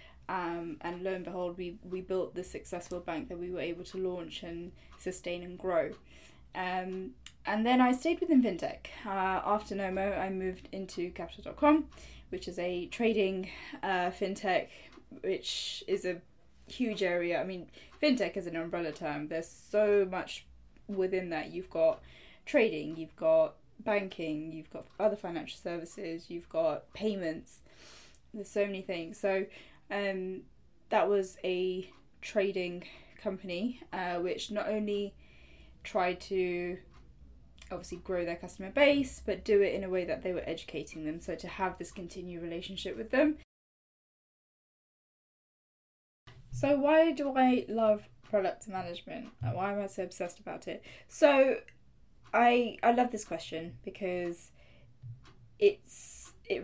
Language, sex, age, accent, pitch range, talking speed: English, female, 10-29, British, 170-210 Hz, 145 wpm